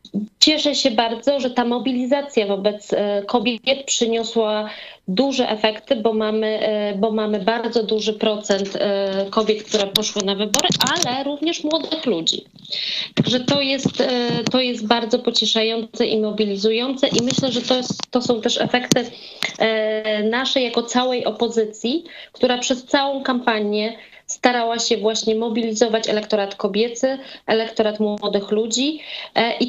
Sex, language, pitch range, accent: female, Polish, 215-250 Hz, native